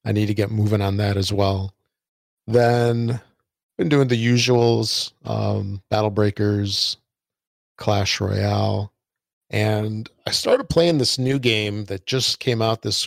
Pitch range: 100-120 Hz